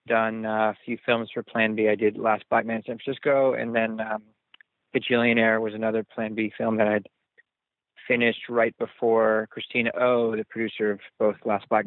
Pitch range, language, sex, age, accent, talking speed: 110-120 Hz, English, male, 20-39, American, 180 wpm